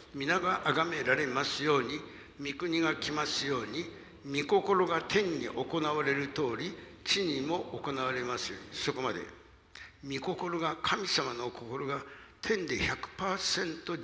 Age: 60-79